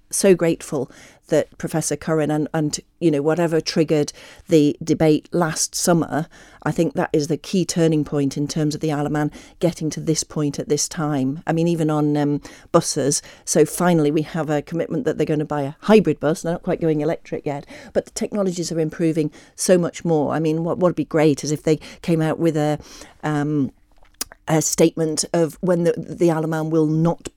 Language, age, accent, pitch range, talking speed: English, 50-69, British, 150-165 Hz, 200 wpm